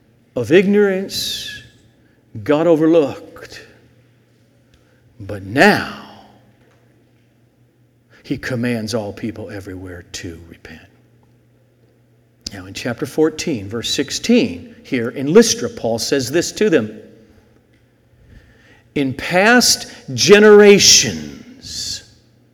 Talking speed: 80 wpm